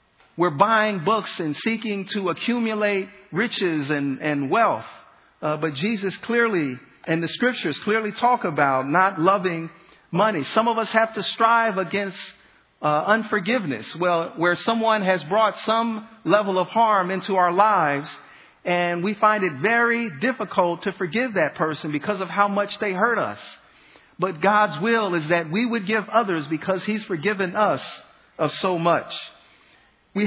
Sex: male